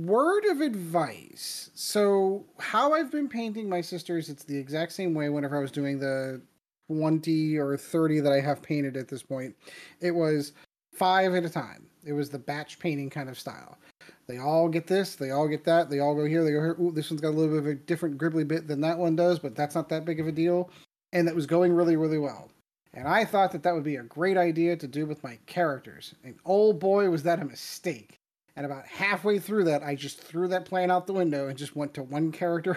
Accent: American